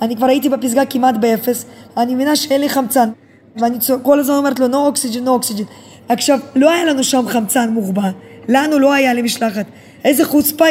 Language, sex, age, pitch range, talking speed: Hebrew, female, 20-39, 250-295 Hz, 195 wpm